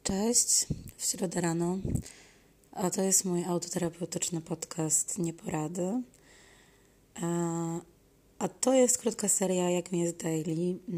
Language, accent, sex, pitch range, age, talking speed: Polish, native, female, 165-185 Hz, 20-39, 105 wpm